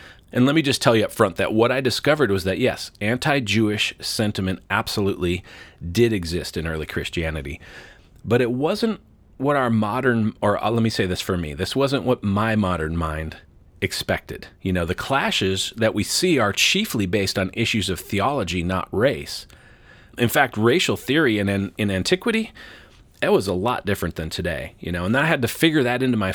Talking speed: 190 wpm